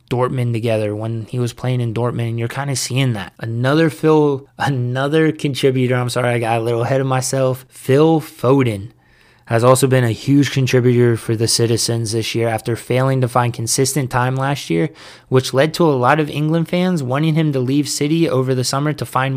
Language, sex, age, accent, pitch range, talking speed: English, male, 20-39, American, 120-140 Hz, 205 wpm